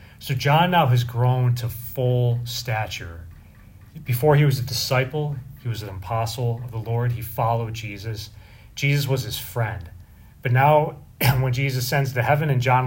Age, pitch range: 30-49, 100-125 Hz